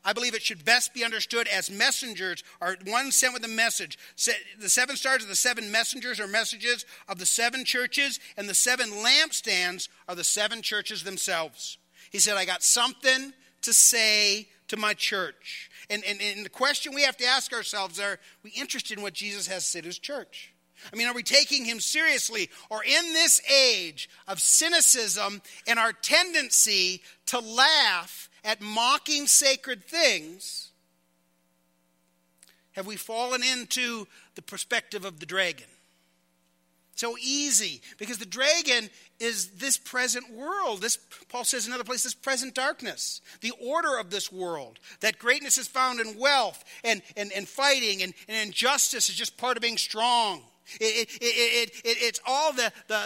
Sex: male